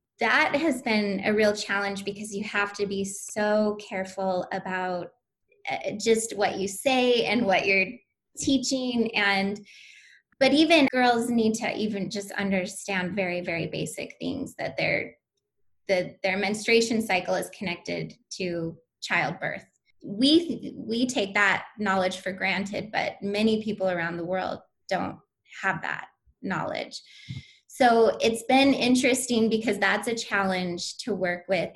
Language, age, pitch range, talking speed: English, 20-39, 190-230 Hz, 140 wpm